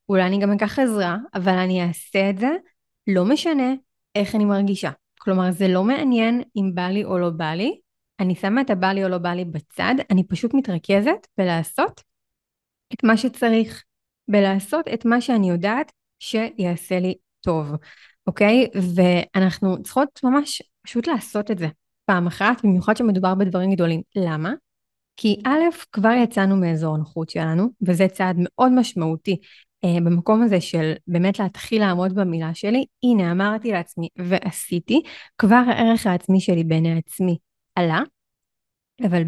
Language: Hebrew